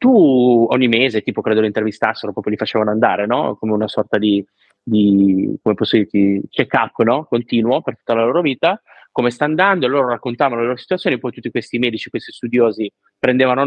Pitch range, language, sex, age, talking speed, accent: 110-135 Hz, Italian, male, 30-49, 200 wpm, native